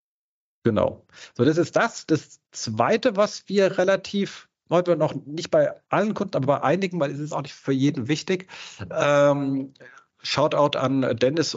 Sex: male